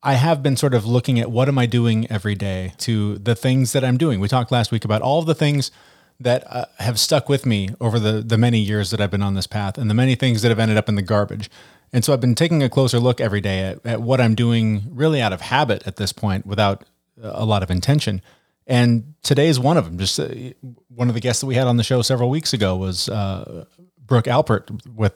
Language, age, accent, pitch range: English, 30-49, American, 105-135 Hz